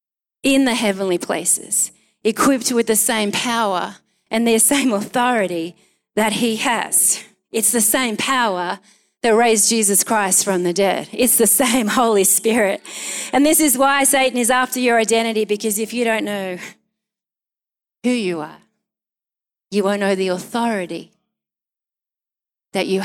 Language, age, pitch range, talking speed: English, 30-49, 195-235 Hz, 145 wpm